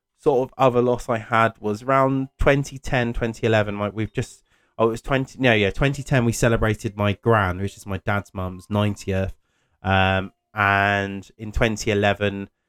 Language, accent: English, British